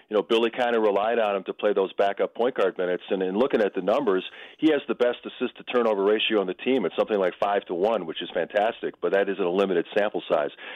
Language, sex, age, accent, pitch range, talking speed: English, male, 40-59, American, 100-115 Hz, 245 wpm